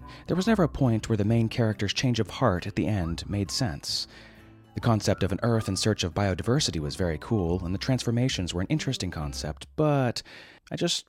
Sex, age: male, 30-49